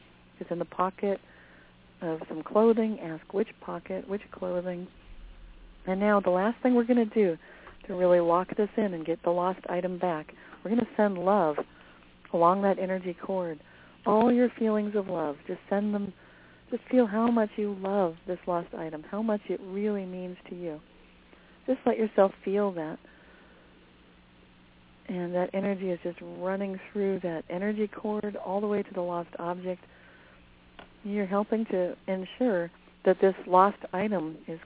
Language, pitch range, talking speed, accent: English, 165-205 Hz, 165 wpm, American